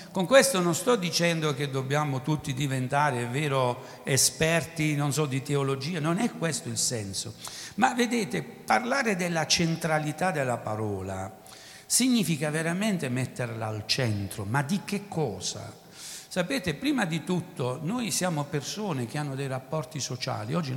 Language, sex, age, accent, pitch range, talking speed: Italian, male, 60-79, native, 125-180 Hz, 145 wpm